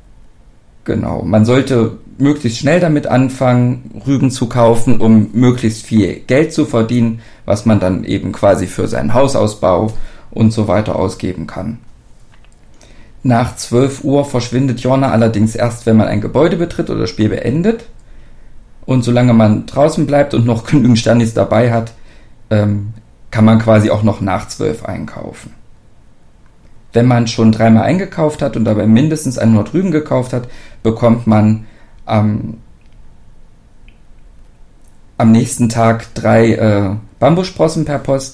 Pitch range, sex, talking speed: 110-125 Hz, male, 140 wpm